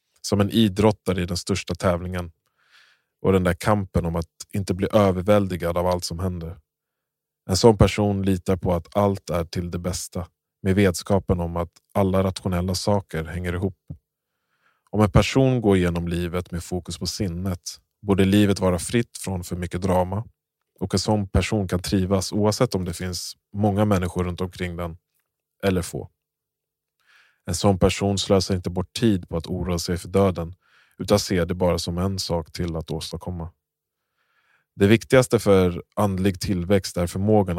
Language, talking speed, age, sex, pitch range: Swedish, 170 wpm, 20-39, male, 90-100 Hz